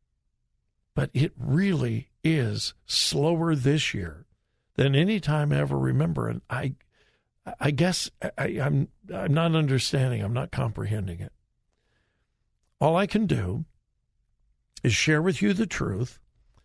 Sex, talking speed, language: male, 125 wpm, English